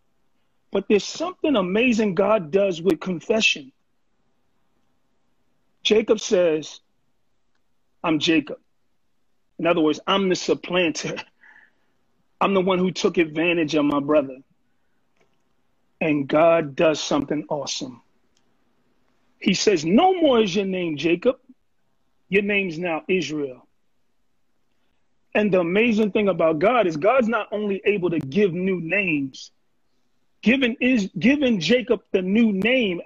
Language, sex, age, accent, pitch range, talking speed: English, male, 40-59, American, 190-270 Hz, 120 wpm